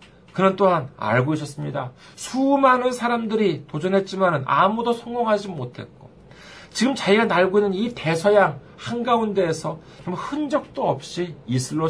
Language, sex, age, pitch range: Korean, male, 40-59, 150-195 Hz